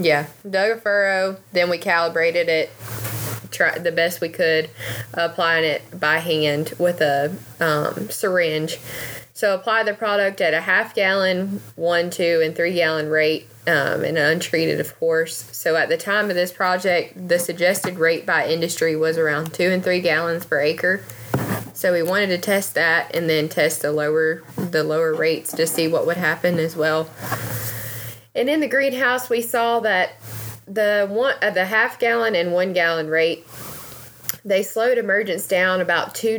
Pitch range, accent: 155-190 Hz, American